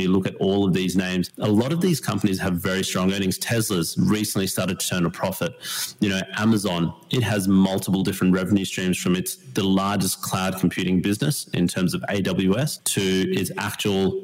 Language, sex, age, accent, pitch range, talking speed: English, male, 30-49, Australian, 90-105 Hz, 190 wpm